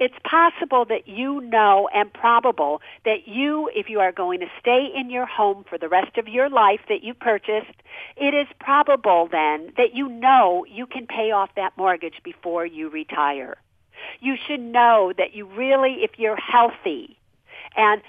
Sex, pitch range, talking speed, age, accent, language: female, 185-245 Hz, 175 wpm, 50-69, American, English